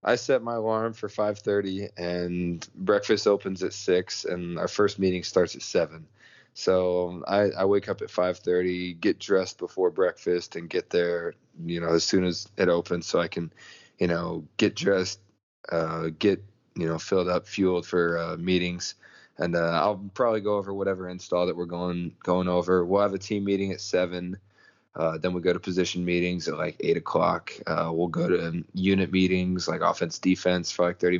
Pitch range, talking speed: 85-100 Hz, 190 wpm